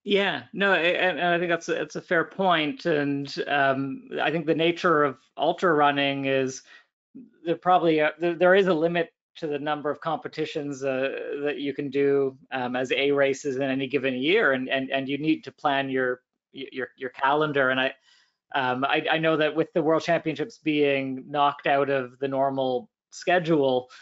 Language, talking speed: English, 190 wpm